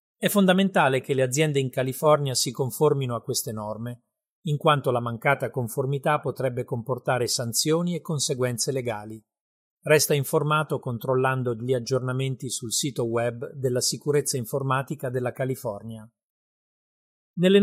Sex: male